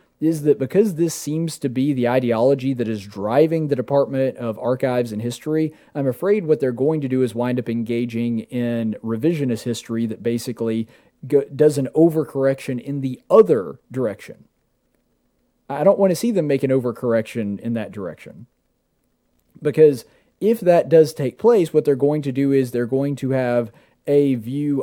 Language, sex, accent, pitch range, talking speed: English, male, American, 125-160 Hz, 170 wpm